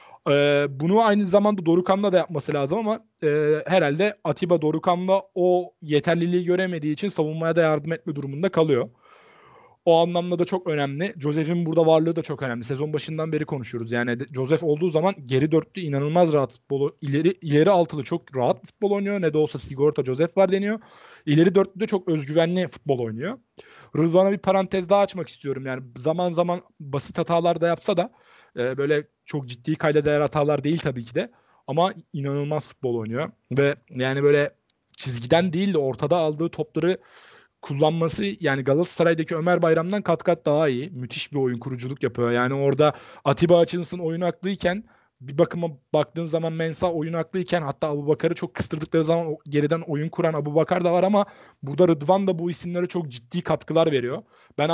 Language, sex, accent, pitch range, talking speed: Turkish, male, native, 145-175 Hz, 170 wpm